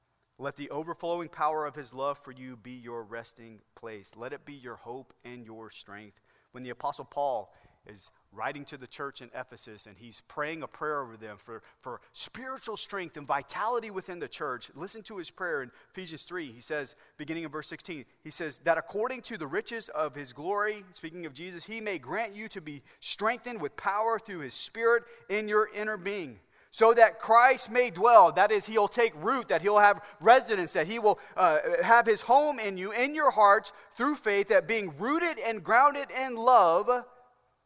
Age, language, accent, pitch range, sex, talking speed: 40-59, English, American, 130-215 Hz, male, 200 wpm